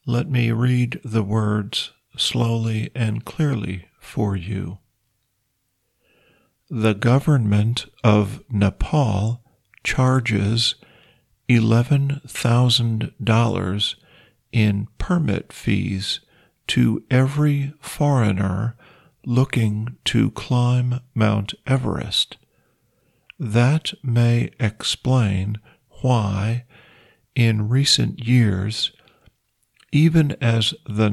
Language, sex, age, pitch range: Thai, male, 50-69, 110-130 Hz